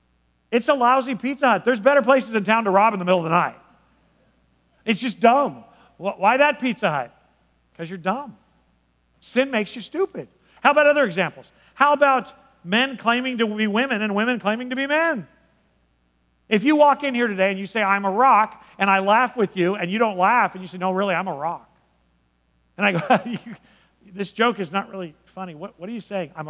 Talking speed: 210 wpm